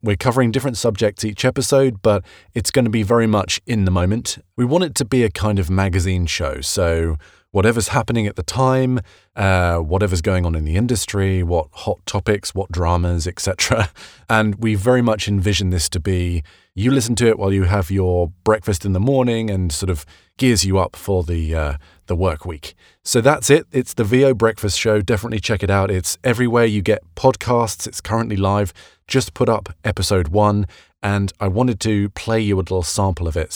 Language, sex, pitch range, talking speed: English, male, 90-115 Hz, 200 wpm